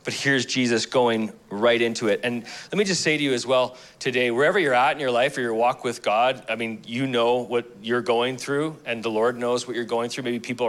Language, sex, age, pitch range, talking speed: English, male, 30-49, 115-140 Hz, 260 wpm